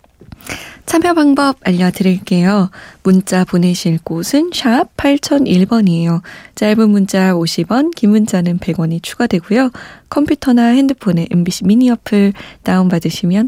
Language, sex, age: Korean, female, 20-39